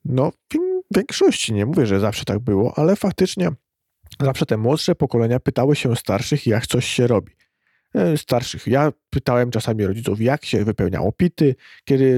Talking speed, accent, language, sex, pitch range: 160 wpm, native, Polish, male, 115-140 Hz